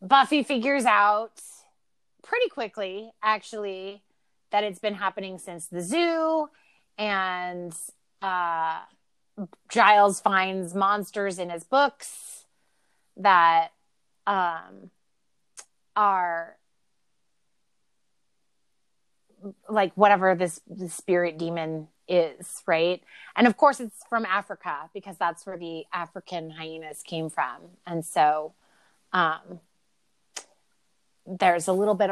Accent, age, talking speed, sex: American, 30-49, 100 wpm, female